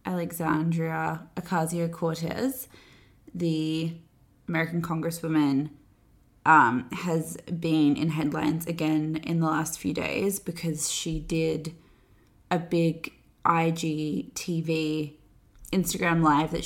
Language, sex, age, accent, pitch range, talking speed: English, female, 20-39, Australian, 150-175 Hz, 95 wpm